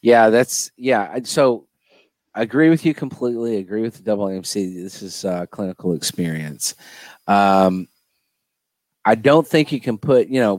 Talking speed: 160 wpm